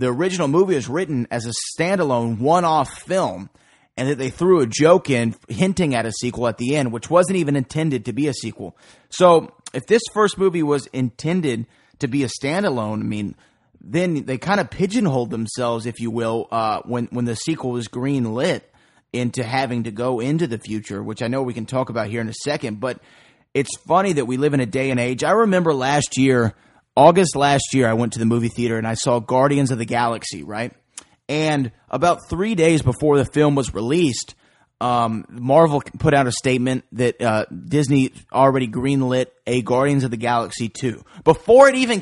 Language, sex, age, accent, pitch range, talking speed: English, male, 30-49, American, 120-160 Hz, 200 wpm